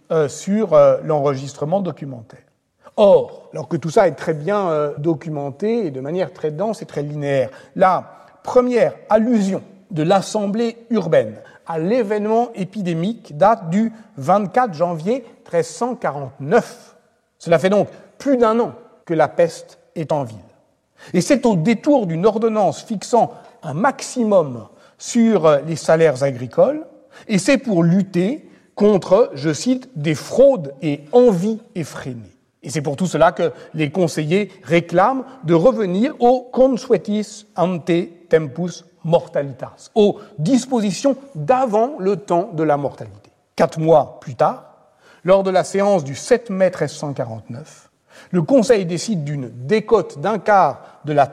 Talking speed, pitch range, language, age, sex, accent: 135 wpm, 160-230 Hz, French, 60-79, male, French